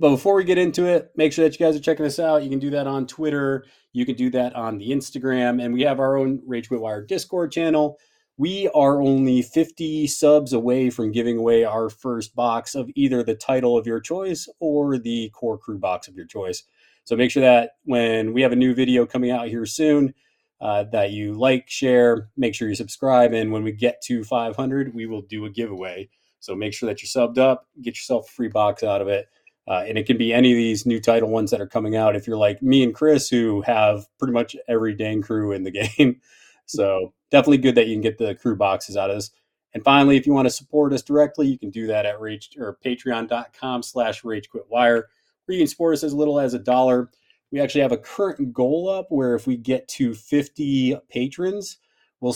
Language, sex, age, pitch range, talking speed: English, male, 30-49, 115-140 Hz, 230 wpm